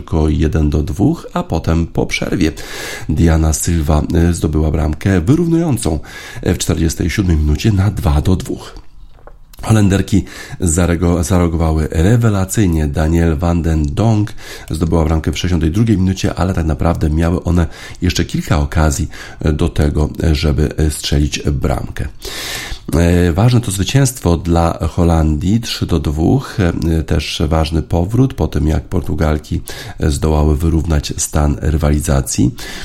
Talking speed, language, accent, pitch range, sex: 115 wpm, Polish, native, 75-95 Hz, male